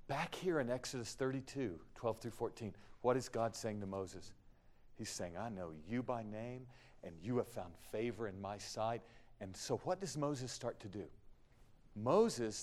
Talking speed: 180 wpm